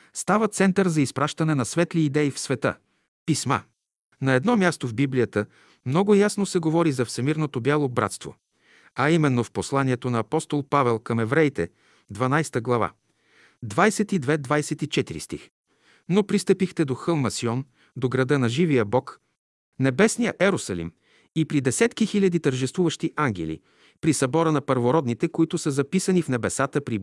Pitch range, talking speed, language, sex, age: 120-165 Hz, 145 wpm, Bulgarian, male, 50-69